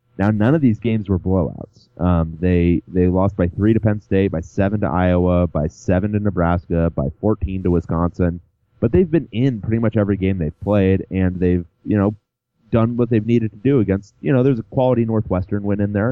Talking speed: 215 wpm